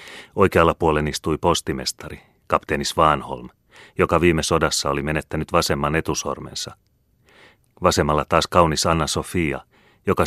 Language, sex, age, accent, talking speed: Finnish, male, 30-49, native, 105 wpm